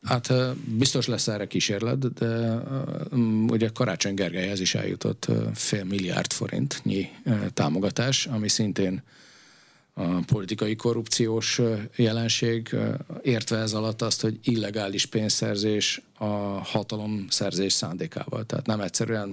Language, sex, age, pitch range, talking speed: Hungarian, male, 40-59, 105-120 Hz, 110 wpm